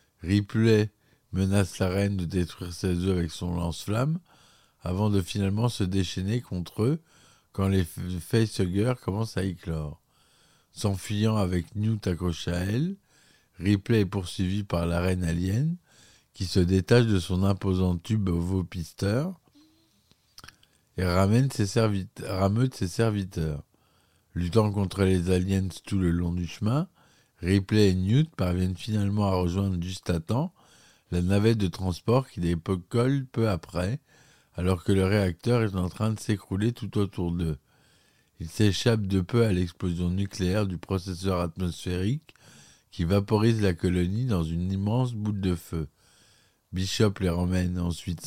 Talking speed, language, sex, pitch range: 145 wpm, French, male, 90-110 Hz